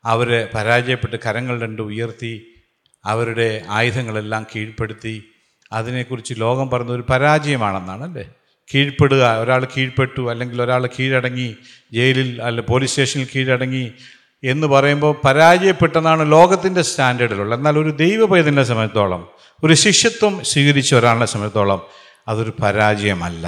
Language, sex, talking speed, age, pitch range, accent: Malayalam, male, 100 wpm, 50-69, 110-145 Hz, native